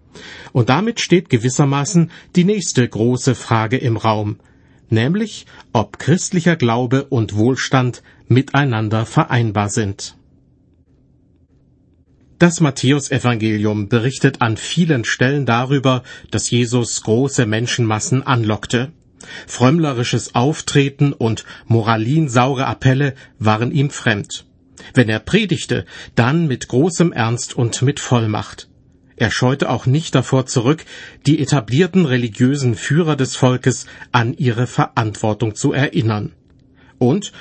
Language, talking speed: German, 105 wpm